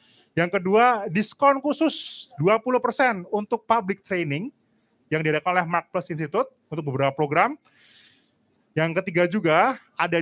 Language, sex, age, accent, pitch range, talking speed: Indonesian, male, 30-49, native, 160-225 Hz, 125 wpm